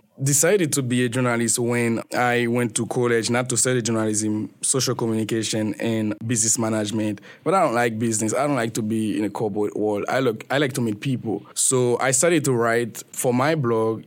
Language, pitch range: English, 110-130 Hz